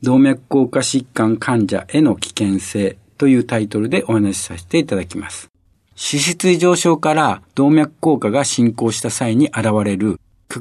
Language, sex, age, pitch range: Japanese, male, 60-79, 105-160 Hz